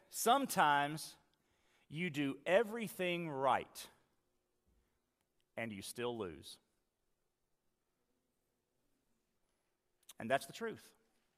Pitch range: 115-180 Hz